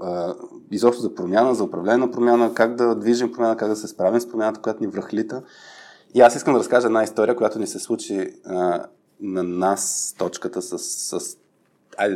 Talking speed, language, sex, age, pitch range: 190 wpm, Bulgarian, male, 20-39, 95-120 Hz